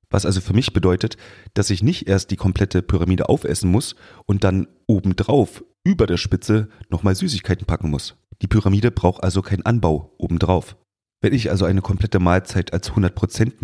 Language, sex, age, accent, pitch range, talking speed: German, male, 30-49, German, 90-110 Hz, 170 wpm